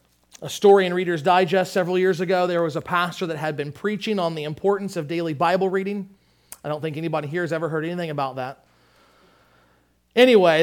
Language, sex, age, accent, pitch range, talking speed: English, male, 40-59, American, 135-190 Hz, 200 wpm